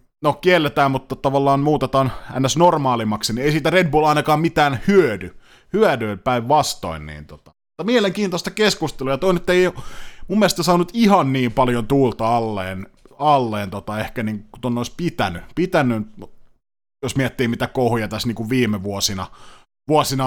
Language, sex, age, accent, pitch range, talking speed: Finnish, male, 30-49, native, 105-145 Hz, 150 wpm